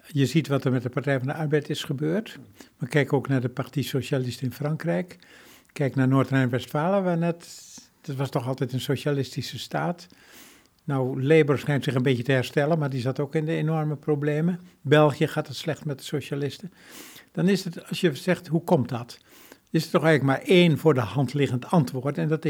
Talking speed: 210 wpm